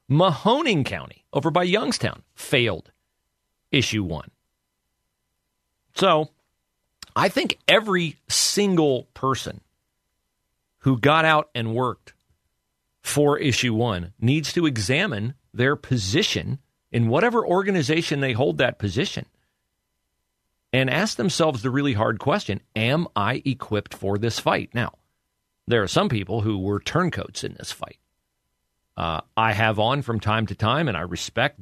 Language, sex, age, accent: English, male, 40-59, American